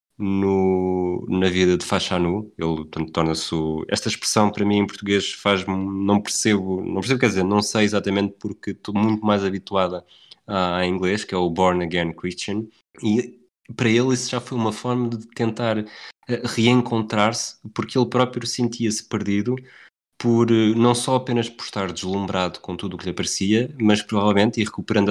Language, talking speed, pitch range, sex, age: Portuguese, 175 wpm, 95-110 Hz, male, 20-39